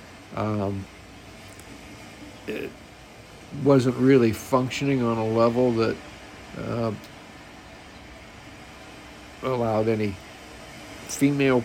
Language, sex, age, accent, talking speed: English, male, 50-69, American, 65 wpm